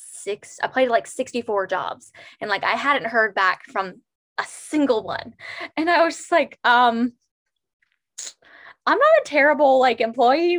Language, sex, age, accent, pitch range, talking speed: English, female, 10-29, American, 205-295 Hz, 160 wpm